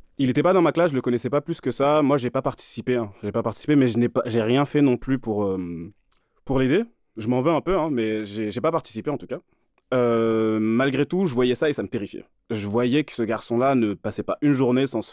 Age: 20-39